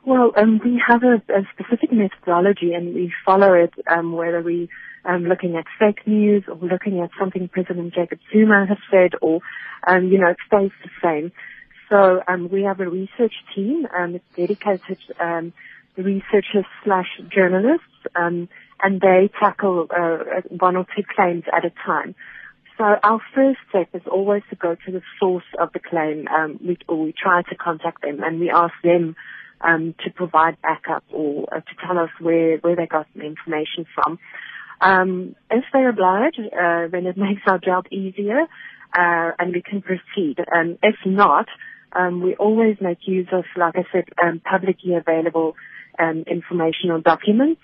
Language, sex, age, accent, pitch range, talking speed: English, female, 30-49, British, 170-200 Hz, 180 wpm